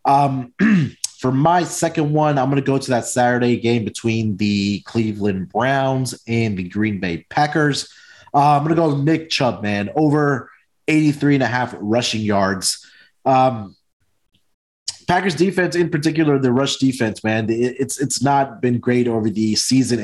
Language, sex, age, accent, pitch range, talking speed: English, male, 20-39, American, 110-135 Hz, 160 wpm